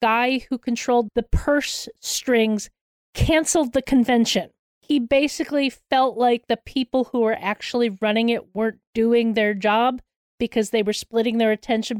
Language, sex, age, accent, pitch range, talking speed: English, female, 40-59, American, 215-250 Hz, 150 wpm